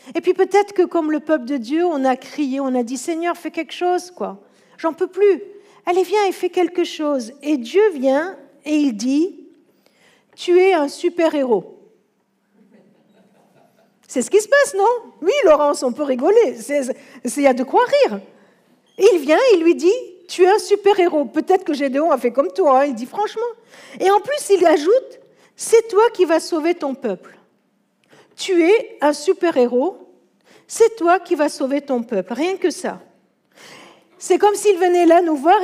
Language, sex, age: French, female, 50-69